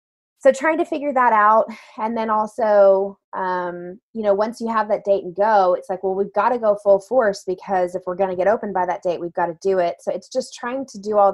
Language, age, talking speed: English, 20-39, 265 wpm